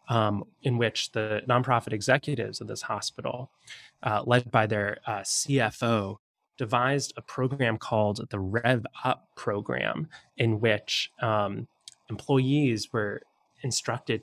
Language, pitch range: English, 105-125 Hz